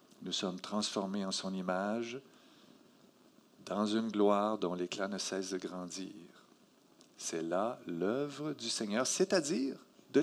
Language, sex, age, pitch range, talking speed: French, male, 50-69, 135-210 Hz, 130 wpm